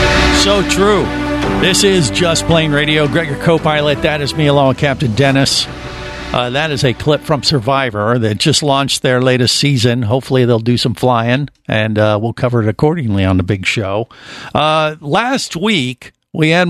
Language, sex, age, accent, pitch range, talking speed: English, male, 50-69, American, 115-145 Hz, 175 wpm